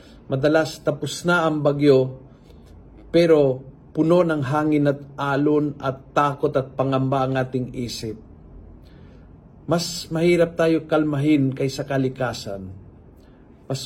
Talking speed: 110 wpm